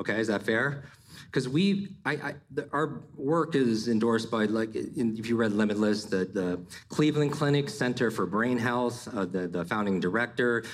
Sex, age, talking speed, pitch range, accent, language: male, 40-59, 160 wpm, 105-135 Hz, American, English